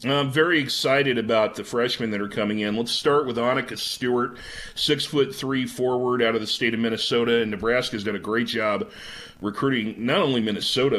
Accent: American